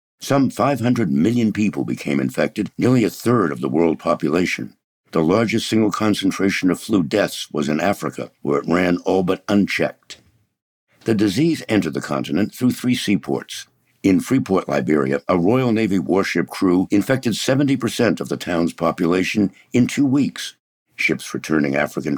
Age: 60-79